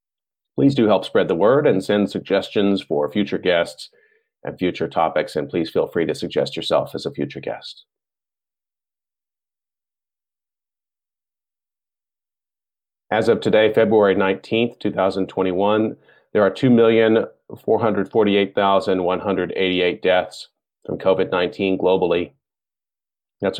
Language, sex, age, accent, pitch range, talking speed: English, male, 40-59, American, 90-105 Hz, 100 wpm